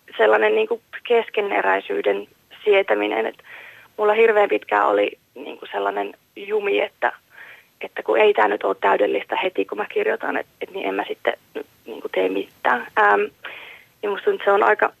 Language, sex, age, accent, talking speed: Finnish, female, 30-49, native, 160 wpm